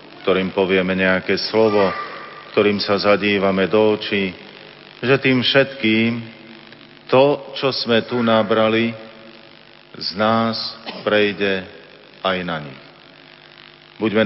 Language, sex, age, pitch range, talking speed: Slovak, male, 40-59, 100-115 Hz, 100 wpm